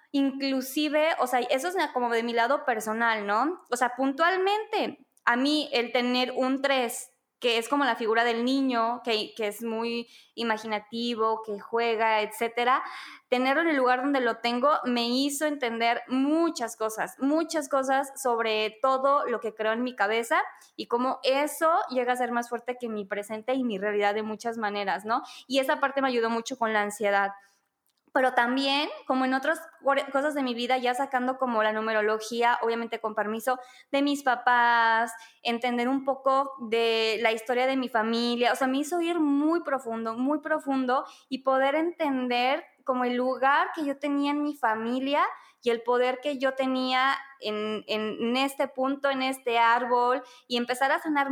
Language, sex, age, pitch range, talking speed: Spanish, female, 20-39, 230-275 Hz, 180 wpm